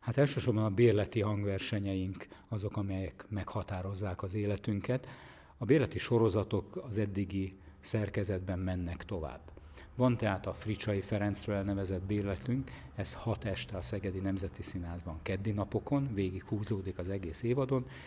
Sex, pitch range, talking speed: male, 95-110 Hz, 125 wpm